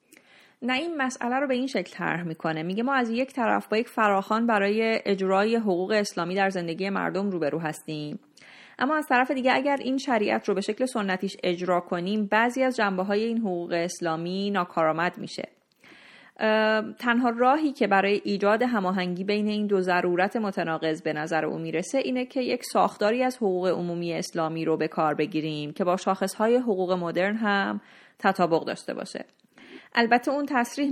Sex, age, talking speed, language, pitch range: female, 30-49, 170 wpm, Persian, 175-225 Hz